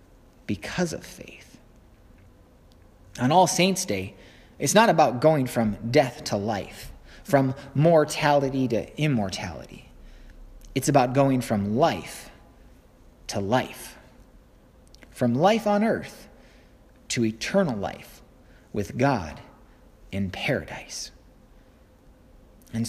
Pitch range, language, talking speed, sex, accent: 105-150 Hz, English, 100 wpm, male, American